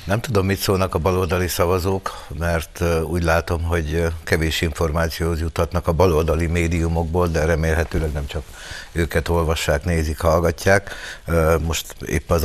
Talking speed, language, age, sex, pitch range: 135 wpm, Hungarian, 60-79, male, 80-90 Hz